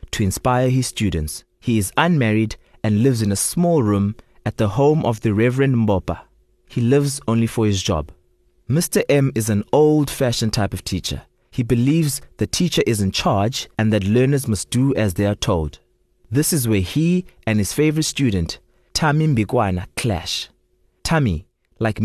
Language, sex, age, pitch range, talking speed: English, male, 30-49, 100-135 Hz, 170 wpm